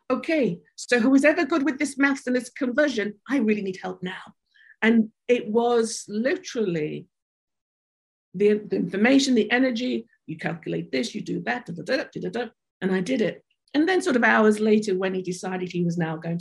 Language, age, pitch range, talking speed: English, 50-69, 185-240 Hz, 200 wpm